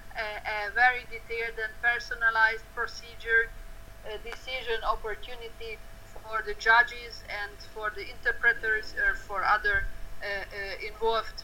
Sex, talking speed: female, 110 wpm